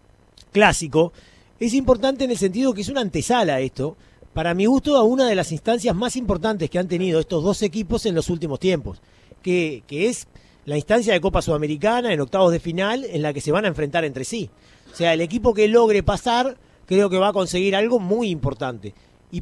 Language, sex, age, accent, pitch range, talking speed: Spanish, male, 40-59, Argentinian, 160-230 Hz, 210 wpm